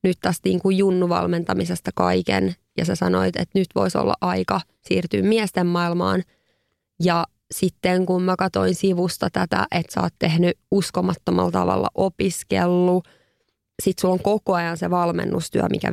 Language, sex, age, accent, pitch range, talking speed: Finnish, female, 20-39, native, 170-190 Hz, 145 wpm